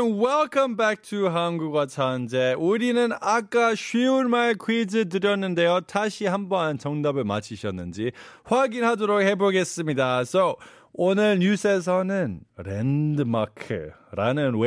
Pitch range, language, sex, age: 130-220 Hz, Korean, male, 20-39